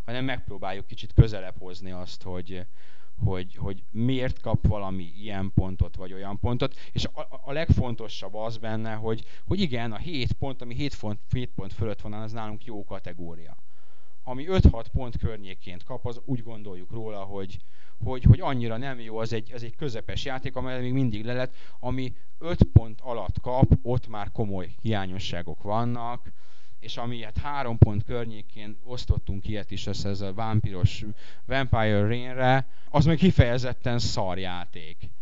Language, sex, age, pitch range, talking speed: Hungarian, male, 30-49, 100-120 Hz, 155 wpm